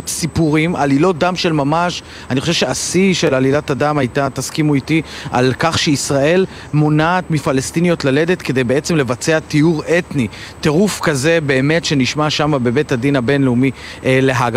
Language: Hebrew